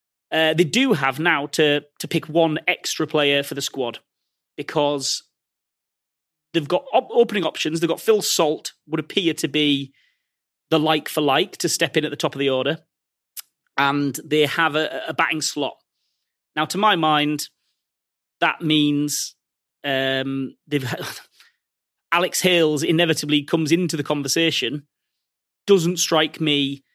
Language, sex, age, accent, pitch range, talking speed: English, male, 30-49, British, 145-170 Hz, 140 wpm